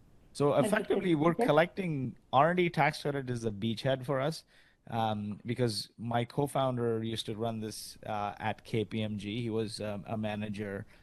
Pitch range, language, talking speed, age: 105-120 Hz, English, 150 wpm, 30-49